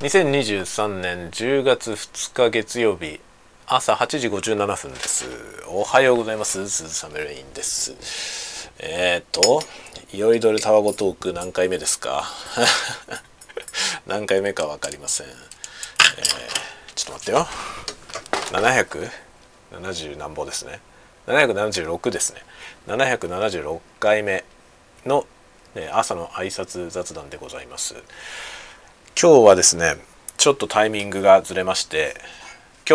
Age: 40-59